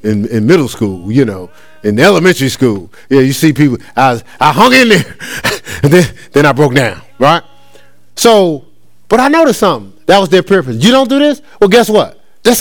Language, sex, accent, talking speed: English, male, American, 200 wpm